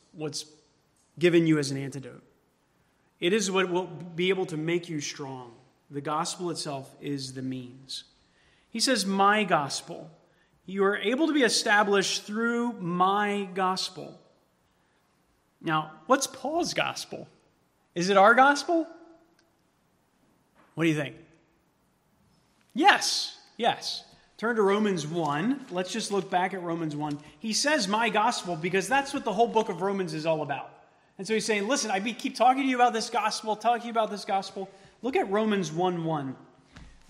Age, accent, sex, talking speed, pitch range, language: 30-49, American, male, 160 wpm, 155-215 Hz, English